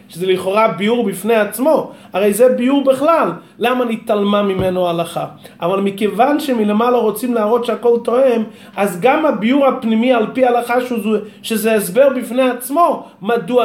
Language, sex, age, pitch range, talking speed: Hebrew, male, 30-49, 190-235 Hz, 140 wpm